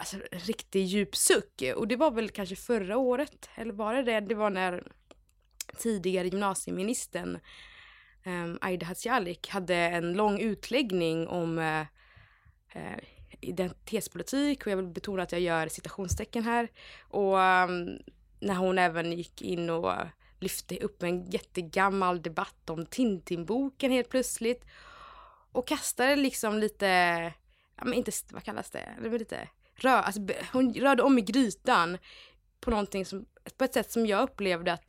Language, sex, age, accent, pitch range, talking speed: English, female, 20-39, Swedish, 180-235 Hz, 145 wpm